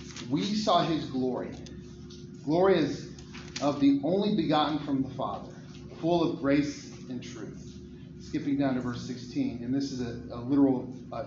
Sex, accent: male, American